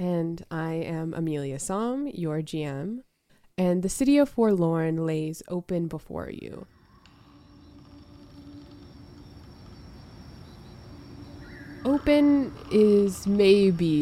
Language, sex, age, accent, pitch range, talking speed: English, female, 20-39, American, 150-175 Hz, 80 wpm